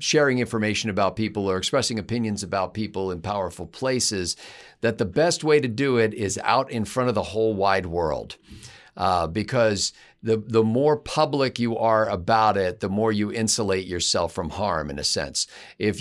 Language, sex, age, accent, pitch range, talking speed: English, male, 50-69, American, 105-125 Hz, 185 wpm